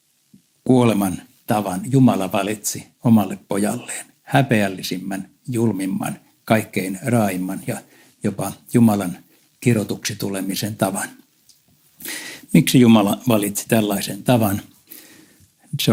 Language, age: Finnish, 60-79